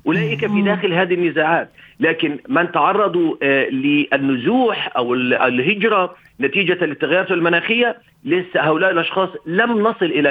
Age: 40-59